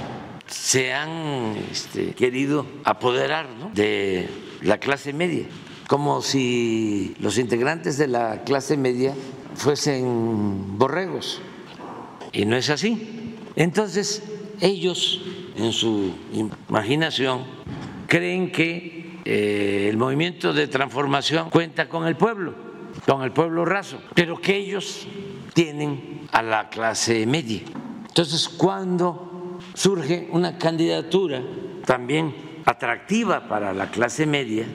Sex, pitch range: male, 125-175 Hz